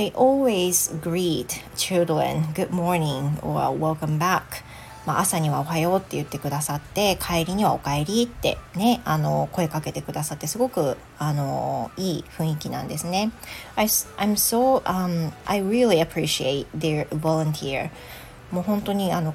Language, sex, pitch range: Japanese, female, 155-190 Hz